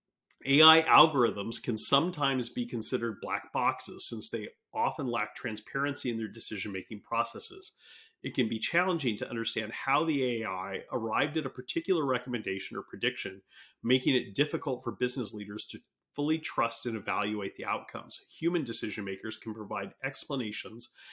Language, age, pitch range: English, 40-59, 115-140 Hz